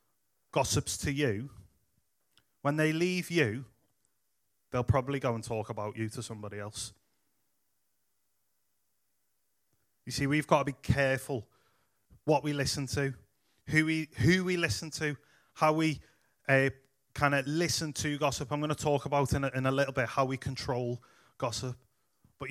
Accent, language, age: British, English, 30-49